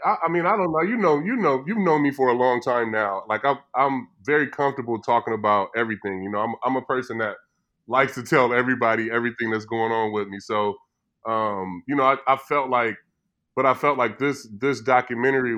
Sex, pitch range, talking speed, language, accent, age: female, 110-130 Hz, 225 wpm, English, American, 20-39